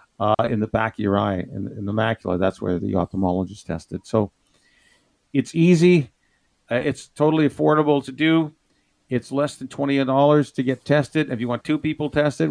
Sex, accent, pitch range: male, American, 115-135 Hz